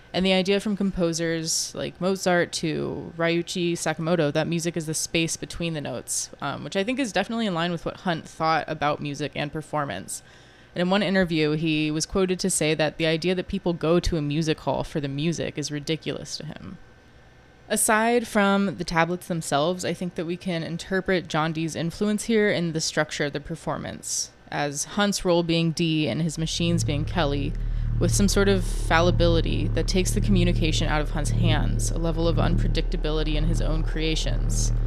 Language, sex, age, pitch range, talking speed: English, female, 20-39, 145-175 Hz, 195 wpm